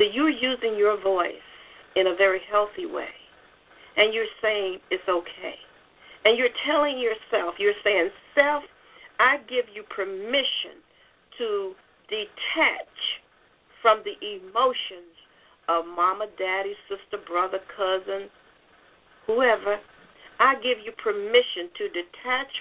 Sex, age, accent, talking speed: female, 50-69, American, 115 wpm